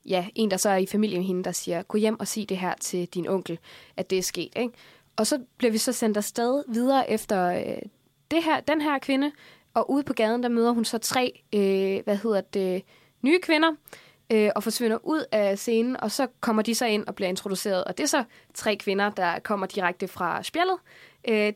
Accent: native